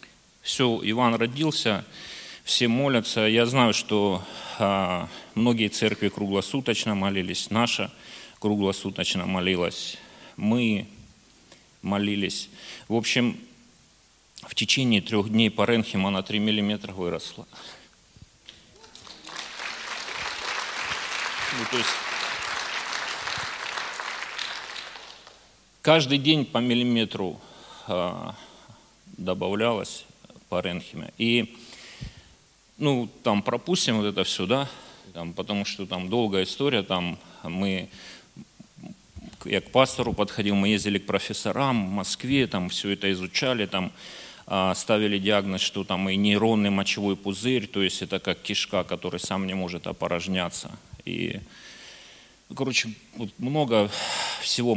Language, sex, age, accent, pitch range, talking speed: Russian, male, 40-59, native, 95-120 Hz, 100 wpm